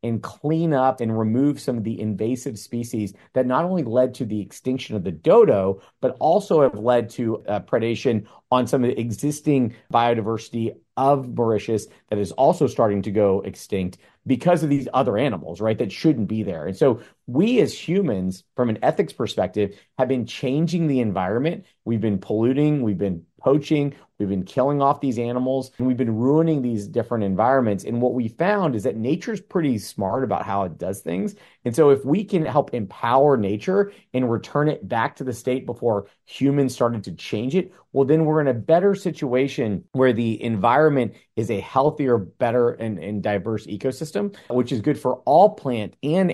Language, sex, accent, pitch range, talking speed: English, male, American, 110-140 Hz, 190 wpm